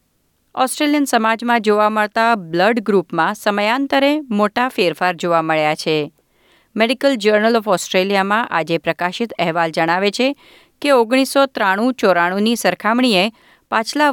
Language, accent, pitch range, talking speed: Gujarati, native, 180-240 Hz, 110 wpm